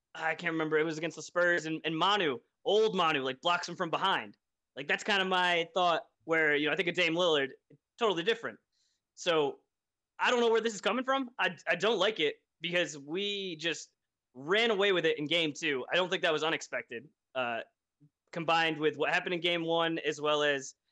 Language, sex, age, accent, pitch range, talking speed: English, male, 20-39, American, 155-210 Hz, 215 wpm